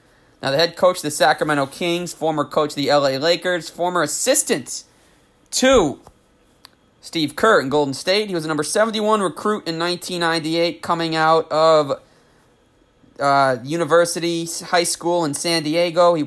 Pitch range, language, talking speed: 145-180 Hz, English, 150 wpm